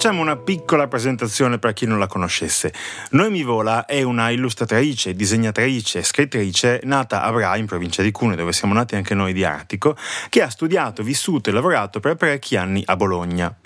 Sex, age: male, 30-49